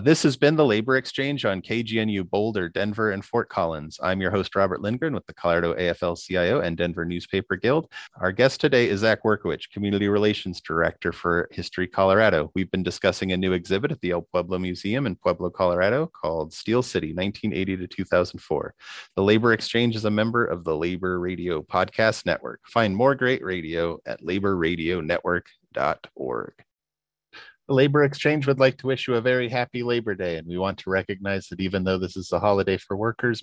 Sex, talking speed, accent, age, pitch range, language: male, 180 wpm, American, 30-49, 95-115 Hz, English